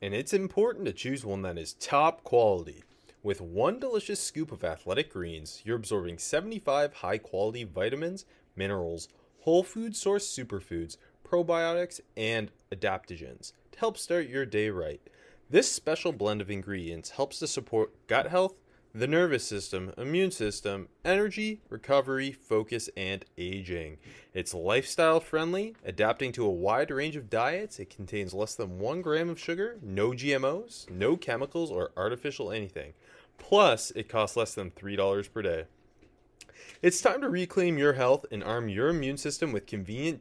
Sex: male